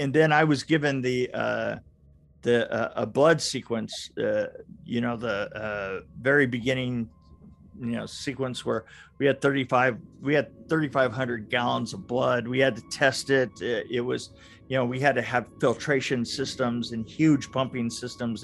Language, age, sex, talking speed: English, 50-69, male, 170 wpm